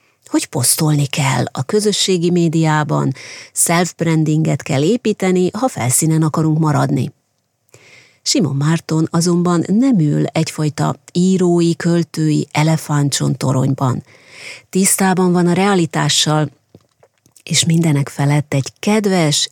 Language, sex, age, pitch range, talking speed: Hungarian, female, 30-49, 150-190 Hz, 95 wpm